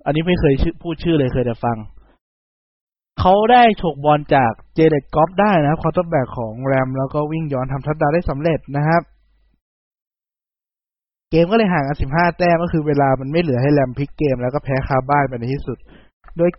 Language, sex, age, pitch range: Thai, male, 20-39, 125-165 Hz